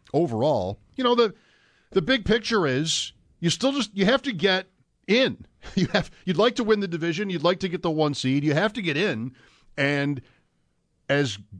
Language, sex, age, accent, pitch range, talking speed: English, male, 50-69, American, 120-175 Hz, 195 wpm